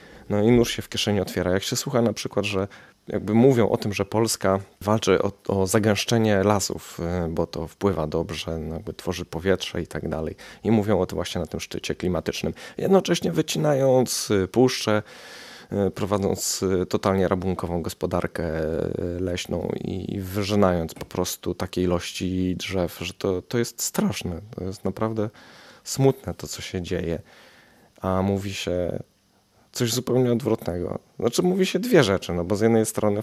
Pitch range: 90-110 Hz